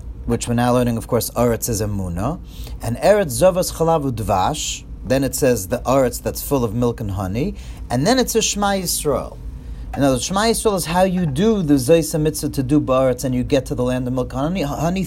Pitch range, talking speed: 115-155 Hz, 220 wpm